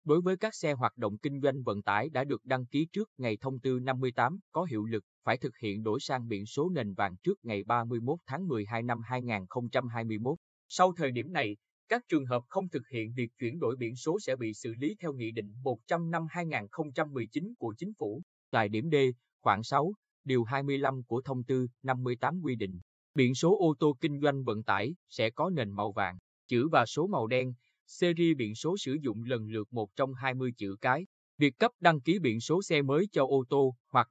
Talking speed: 215 wpm